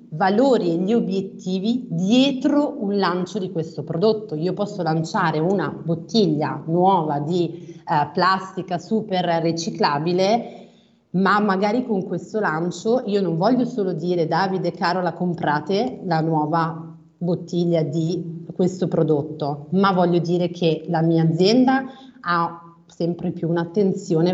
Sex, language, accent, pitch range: female, Italian, native, 165-205 Hz